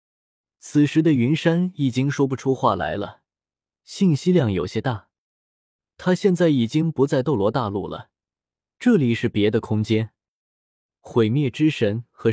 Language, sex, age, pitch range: Chinese, male, 20-39, 110-155 Hz